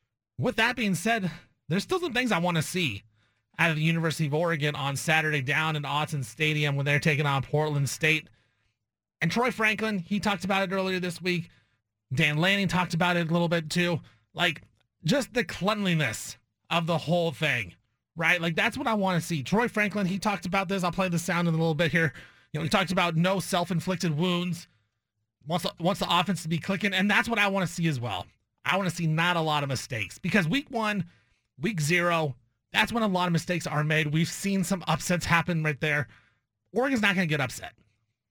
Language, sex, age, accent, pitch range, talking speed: English, male, 30-49, American, 140-185 Hz, 220 wpm